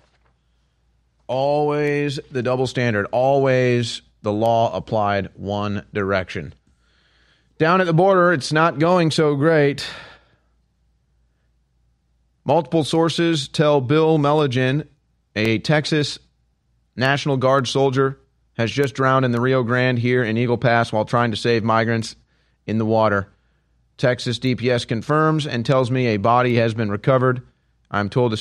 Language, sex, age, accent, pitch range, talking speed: English, male, 30-49, American, 95-130 Hz, 130 wpm